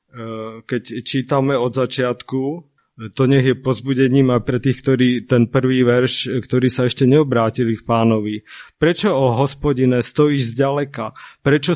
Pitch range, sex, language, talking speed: 125-160 Hz, male, Slovak, 150 wpm